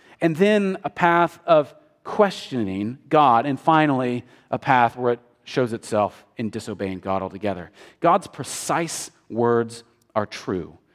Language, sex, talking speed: English, male, 130 wpm